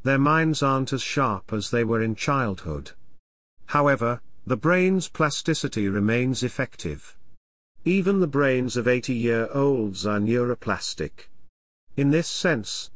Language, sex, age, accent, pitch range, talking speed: English, male, 50-69, British, 105-145 Hz, 120 wpm